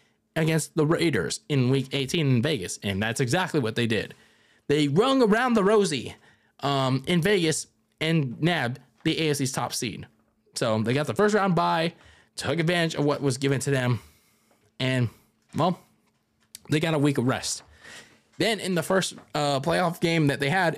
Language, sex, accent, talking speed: English, male, American, 175 wpm